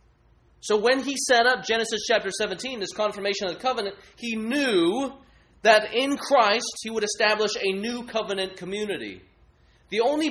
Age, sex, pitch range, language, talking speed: 20-39, male, 130-215 Hz, English, 155 wpm